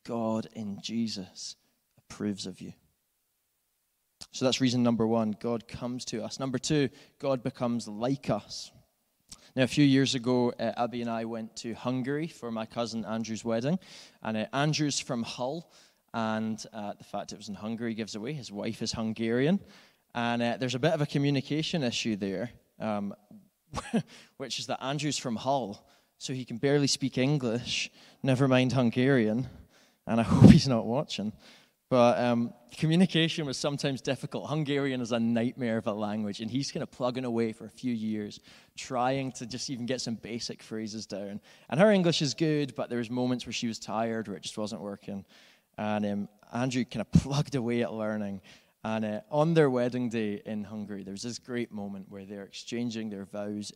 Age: 20-39